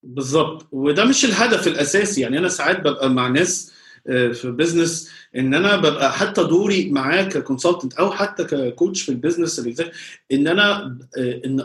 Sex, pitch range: male, 135-180 Hz